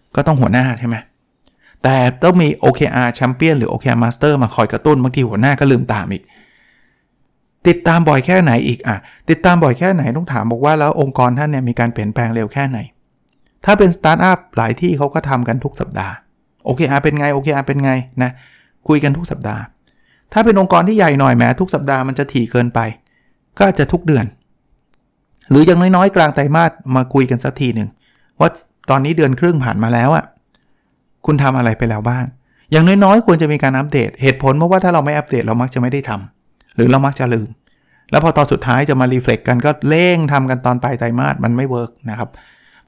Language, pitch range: Thai, 125-155 Hz